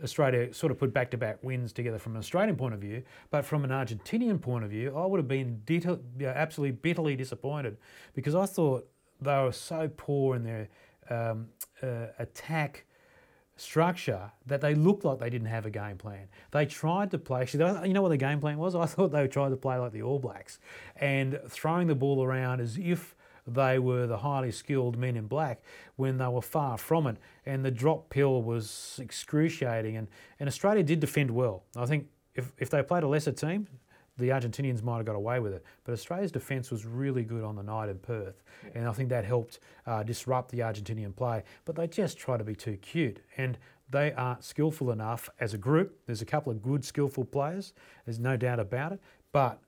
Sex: male